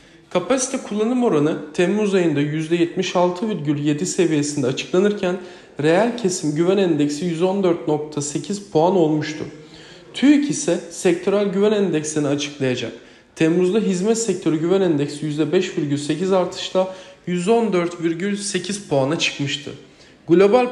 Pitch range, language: 145-185 Hz, Turkish